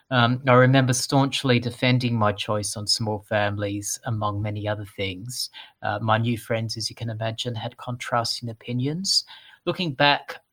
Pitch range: 110-125 Hz